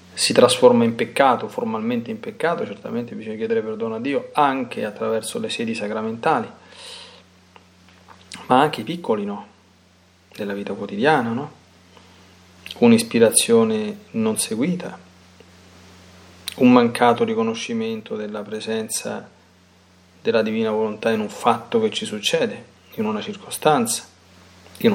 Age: 40-59